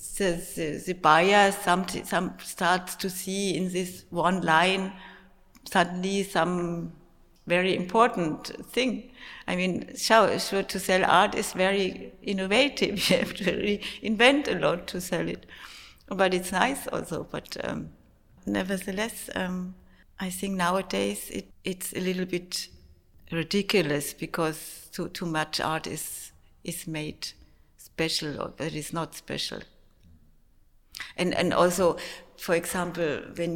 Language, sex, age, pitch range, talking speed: English, female, 60-79, 165-190 Hz, 130 wpm